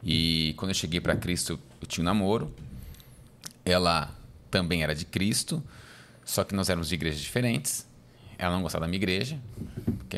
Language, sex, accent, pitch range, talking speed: Portuguese, male, Brazilian, 85-110 Hz, 170 wpm